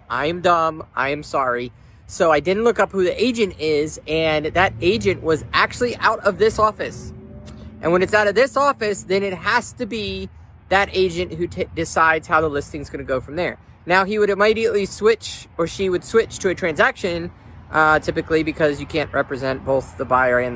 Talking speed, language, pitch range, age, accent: 200 wpm, English, 145-195 Hz, 30-49, American